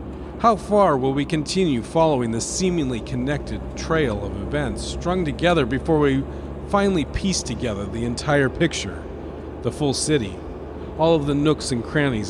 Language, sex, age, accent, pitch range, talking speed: English, male, 40-59, American, 110-140 Hz, 150 wpm